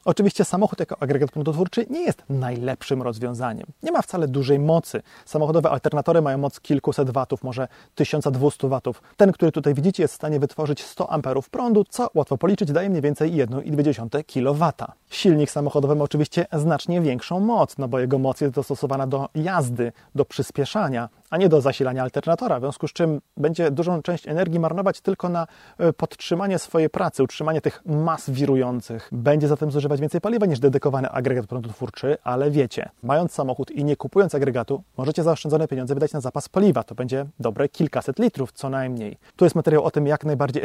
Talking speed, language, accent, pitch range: 175 wpm, Polish, native, 135-170 Hz